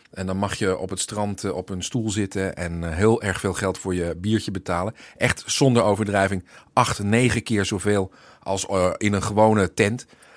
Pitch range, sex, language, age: 95-120 Hz, male, Dutch, 40-59